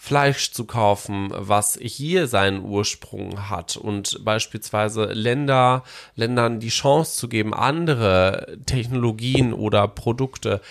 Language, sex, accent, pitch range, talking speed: German, male, German, 105-130 Hz, 105 wpm